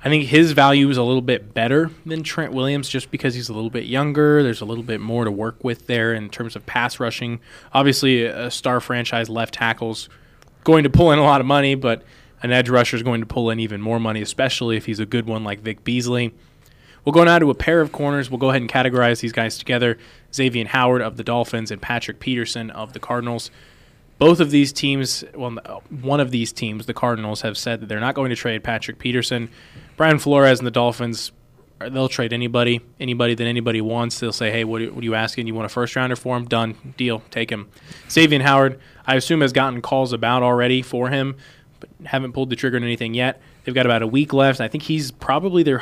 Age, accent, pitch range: 20-39, American, 115-135 Hz